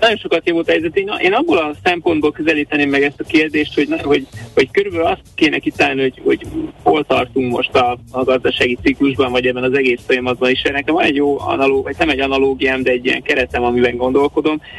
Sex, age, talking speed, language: male, 30-49, 200 wpm, Hungarian